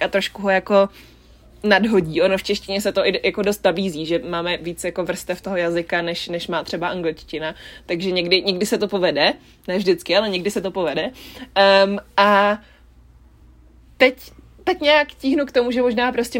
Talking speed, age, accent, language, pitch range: 180 wpm, 20-39, native, Czech, 185-220 Hz